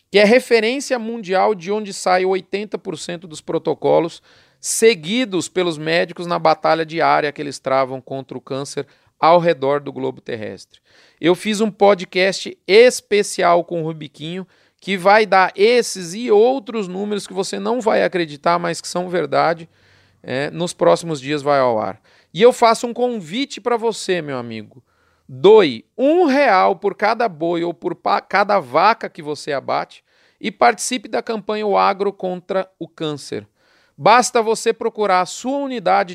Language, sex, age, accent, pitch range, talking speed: Portuguese, male, 40-59, Brazilian, 170-225 Hz, 160 wpm